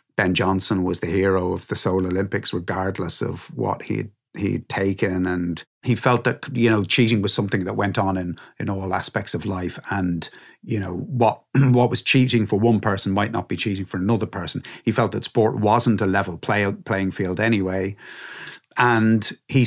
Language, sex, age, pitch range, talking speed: English, male, 30-49, 95-120 Hz, 190 wpm